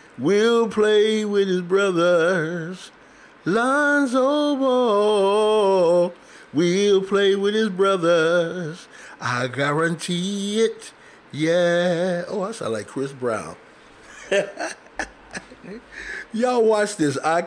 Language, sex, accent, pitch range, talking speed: English, male, American, 135-200 Hz, 90 wpm